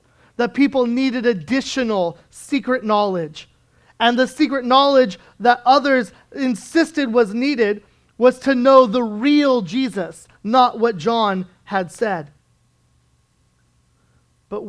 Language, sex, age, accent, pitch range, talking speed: English, male, 30-49, American, 185-250 Hz, 110 wpm